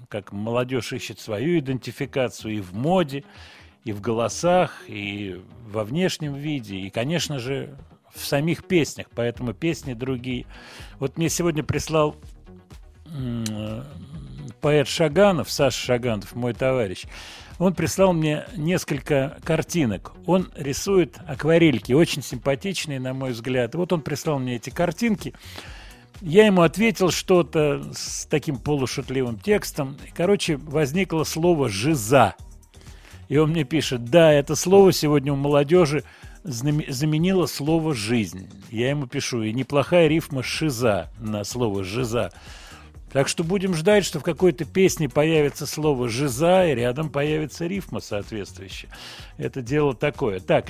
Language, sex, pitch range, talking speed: Russian, male, 115-160 Hz, 130 wpm